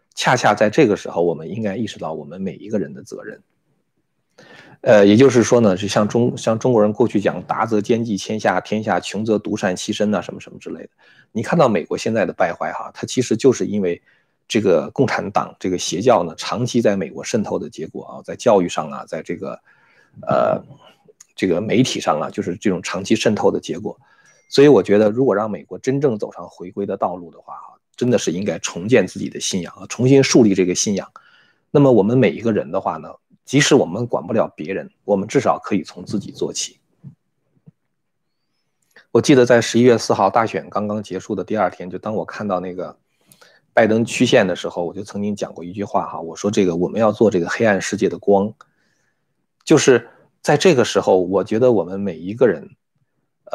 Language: Chinese